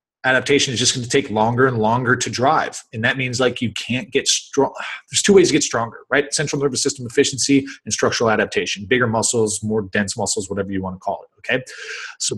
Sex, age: male, 30-49